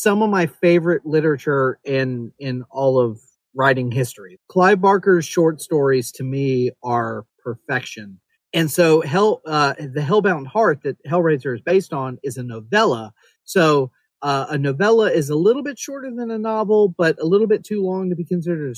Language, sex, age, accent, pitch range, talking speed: English, male, 40-59, American, 135-195 Hz, 175 wpm